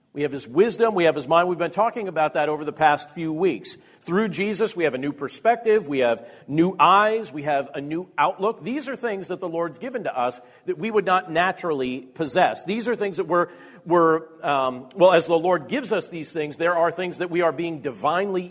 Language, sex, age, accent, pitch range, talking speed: English, male, 40-59, American, 155-215 Hz, 235 wpm